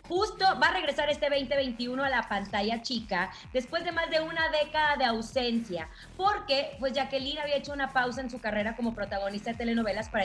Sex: female